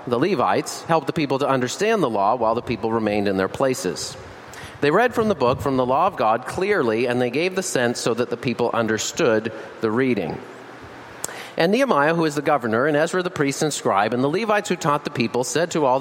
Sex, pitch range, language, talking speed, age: male, 120-180 Hz, English, 230 wpm, 40-59